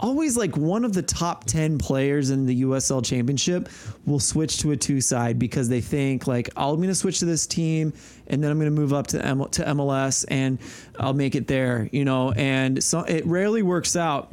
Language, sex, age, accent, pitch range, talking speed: English, male, 30-49, American, 130-160 Hz, 220 wpm